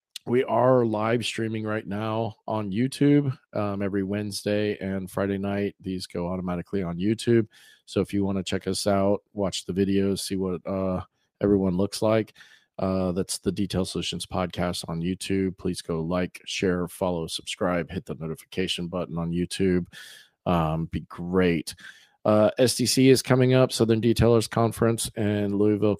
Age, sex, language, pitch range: 40-59, male, English, 90-110 Hz